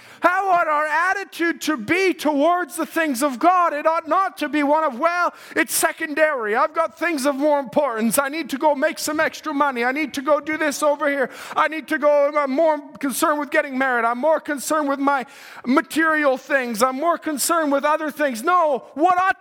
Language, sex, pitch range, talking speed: English, male, 240-315 Hz, 215 wpm